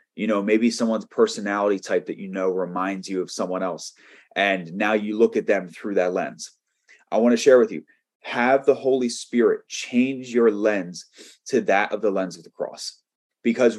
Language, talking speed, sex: English, 195 wpm, male